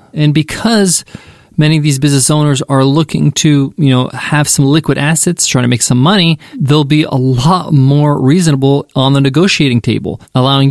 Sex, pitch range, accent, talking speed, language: male, 135-175 Hz, American, 180 wpm, English